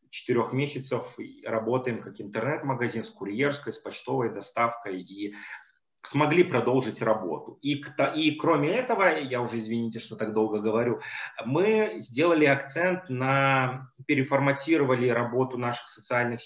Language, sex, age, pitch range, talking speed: Russian, male, 30-49, 115-140 Hz, 120 wpm